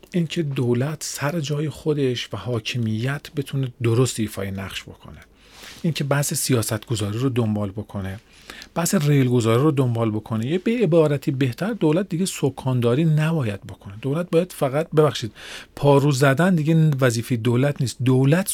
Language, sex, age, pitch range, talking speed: Persian, male, 40-59, 115-160 Hz, 140 wpm